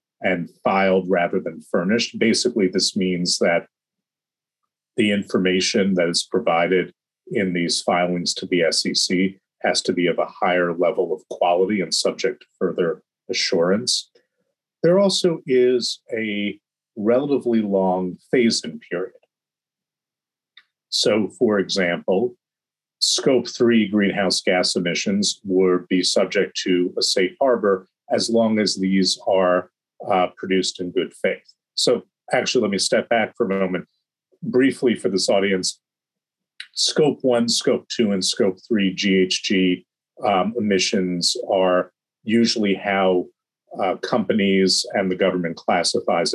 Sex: male